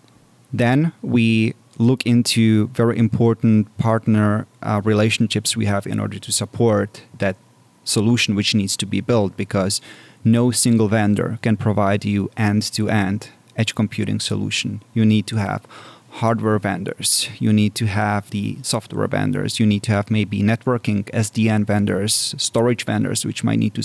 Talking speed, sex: 150 wpm, male